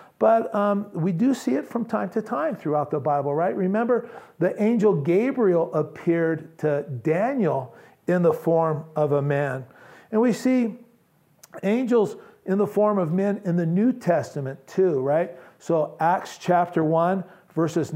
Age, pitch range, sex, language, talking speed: 50-69, 160-225 Hz, male, English, 155 wpm